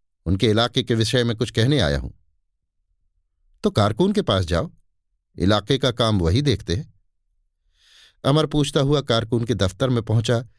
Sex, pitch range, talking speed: male, 85-140 Hz, 160 wpm